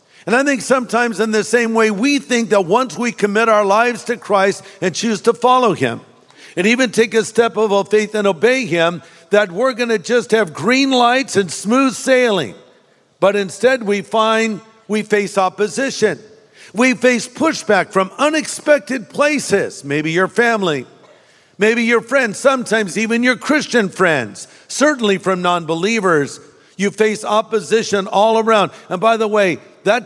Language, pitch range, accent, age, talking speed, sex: English, 185-235 Hz, American, 50-69, 160 wpm, male